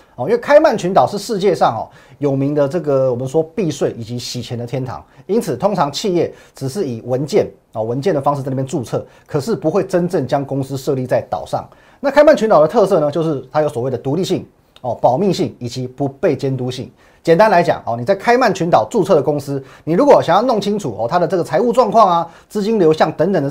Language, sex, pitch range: Chinese, male, 135-180 Hz